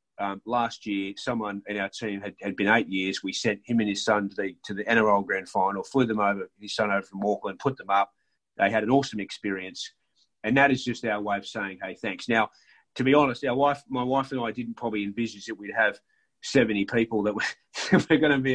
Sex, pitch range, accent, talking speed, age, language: male, 105-135 Hz, Australian, 240 wpm, 30-49, English